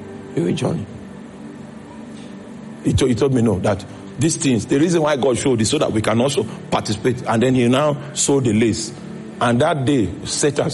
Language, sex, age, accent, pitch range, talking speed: English, male, 50-69, Nigerian, 105-145 Hz, 175 wpm